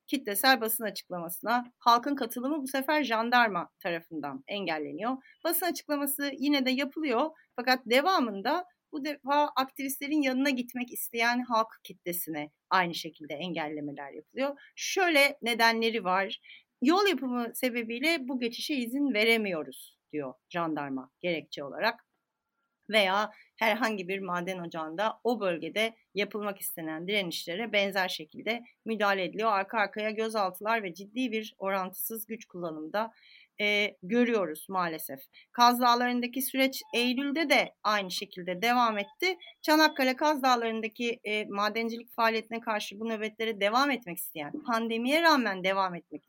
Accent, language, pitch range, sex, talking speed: native, Turkish, 190-260 Hz, female, 120 wpm